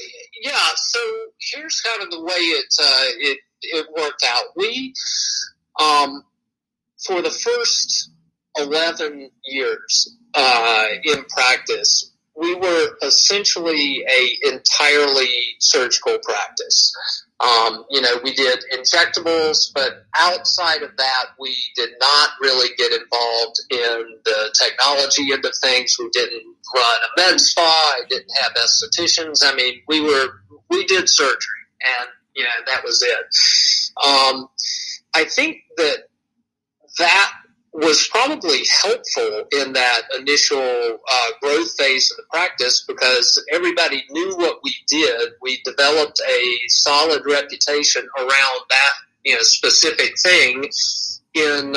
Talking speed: 125 wpm